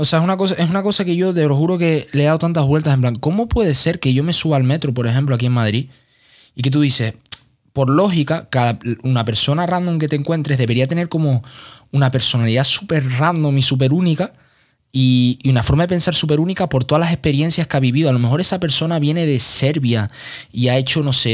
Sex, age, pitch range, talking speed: male, 20-39, 125-160 Hz, 235 wpm